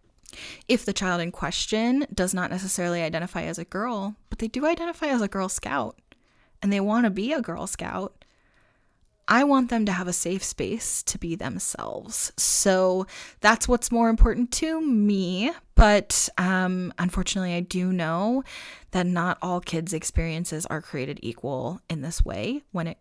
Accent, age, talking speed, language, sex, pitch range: American, 20-39, 170 wpm, English, female, 180-255 Hz